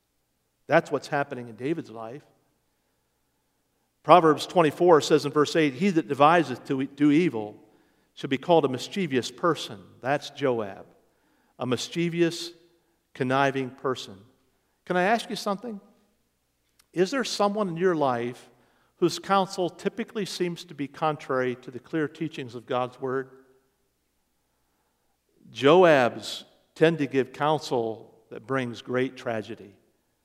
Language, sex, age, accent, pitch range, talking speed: English, male, 50-69, American, 135-175 Hz, 125 wpm